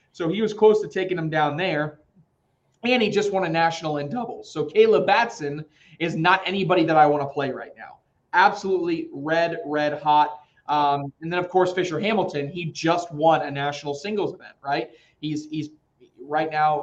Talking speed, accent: 190 wpm, American